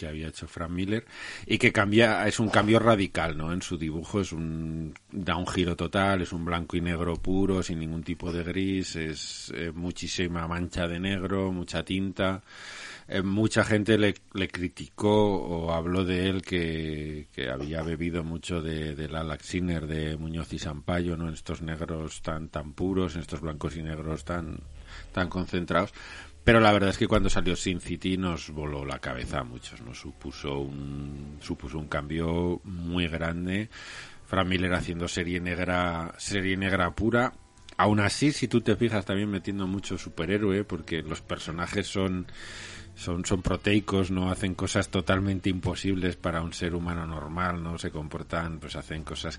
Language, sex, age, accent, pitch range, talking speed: Spanish, male, 40-59, Spanish, 80-95 Hz, 175 wpm